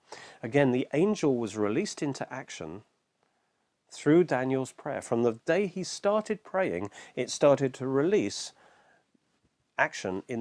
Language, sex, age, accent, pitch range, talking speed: English, male, 40-59, British, 130-180 Hz, 125 wpm